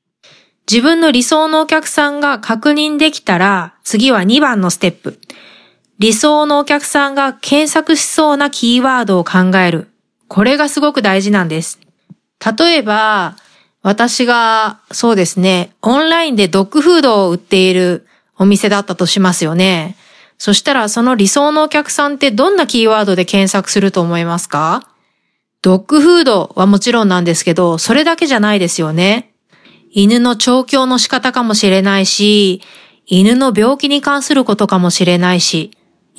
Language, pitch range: Japanese, 195-280 Hz